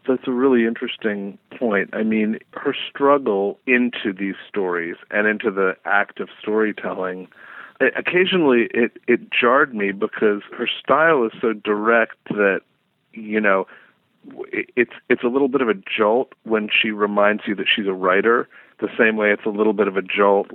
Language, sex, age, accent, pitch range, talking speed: English, male, 40-59, American, 100-120 Hz, 180 wpm